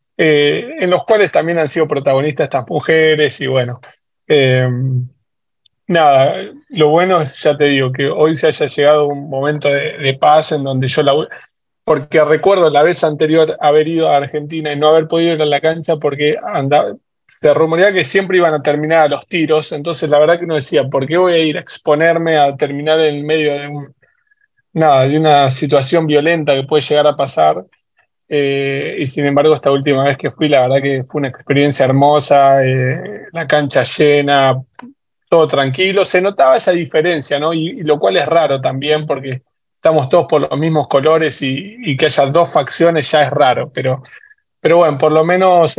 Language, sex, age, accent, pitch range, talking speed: Spanish, male, 20-39, Argentinian, 140-160 Hz, 195 wpm